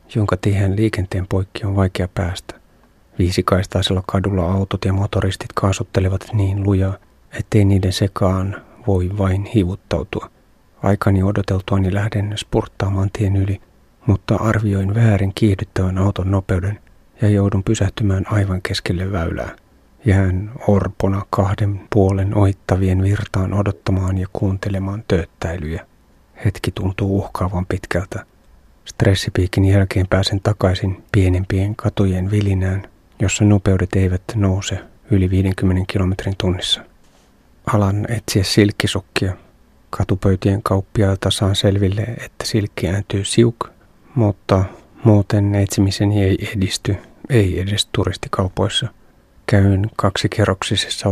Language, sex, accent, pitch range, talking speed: Finnish, male, native, 95-105 Hz, 105 wpm